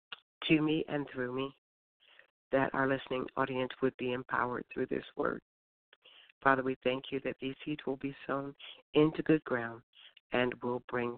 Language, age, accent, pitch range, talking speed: English, 50-69, American, 125-145 Hz, 165 wpm